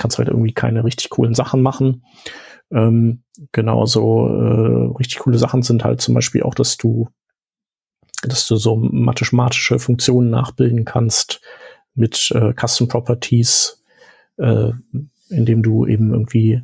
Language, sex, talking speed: German, male, 135 wpm